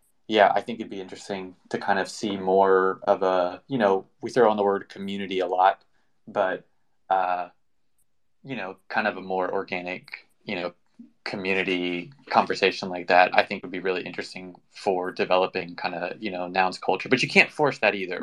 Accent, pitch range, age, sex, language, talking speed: American, 95-120 Hz, 20-39, male, English, 190 wpm